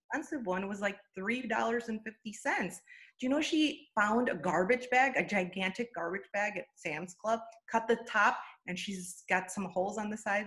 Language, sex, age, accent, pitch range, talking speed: English, female, 30-49, American, 170-230 Hz, 170 wpm